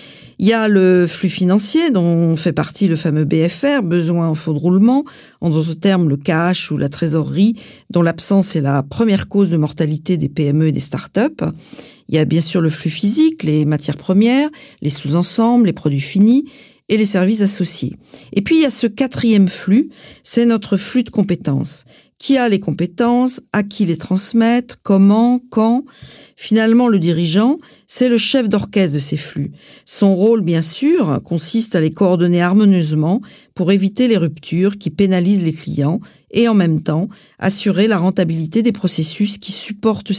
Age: 50-69